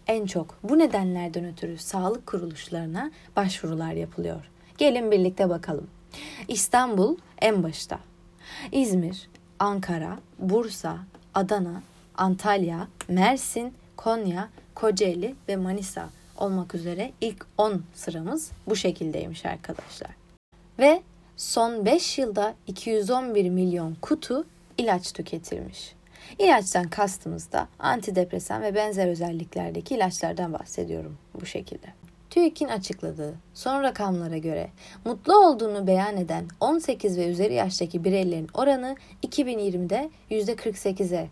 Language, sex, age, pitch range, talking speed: Turkish, female, 30-49, 175-230 Hz, 100 wpm